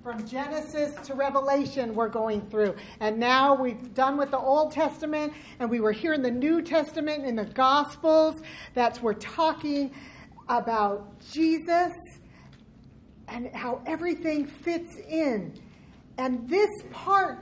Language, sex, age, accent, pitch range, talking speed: English, female, 40-59, American, 270-350 Hz, 135 wpm